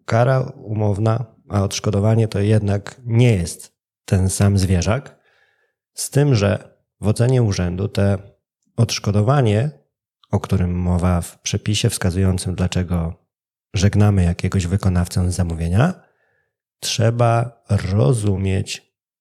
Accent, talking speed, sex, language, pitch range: native, 105 wpm, male, Polish, 100-120 Hz